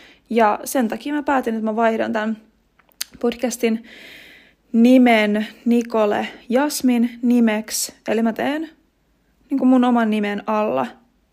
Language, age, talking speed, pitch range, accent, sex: Finnish, 20-39, 115 wpm, 225-260 Hz, native, female